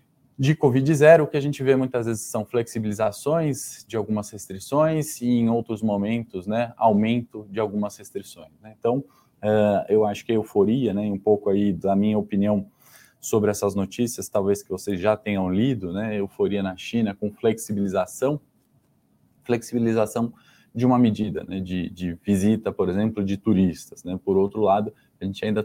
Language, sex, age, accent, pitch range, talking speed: Portuguese, male, 20-39, Brazilian, 100-120 Hz, 170 wpm